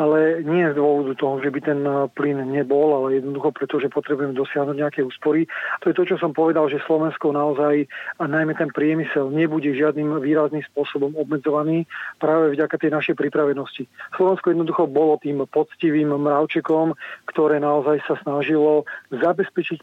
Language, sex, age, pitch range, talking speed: Slovak, male, 40-59, 145-165 Hz, 160 wpm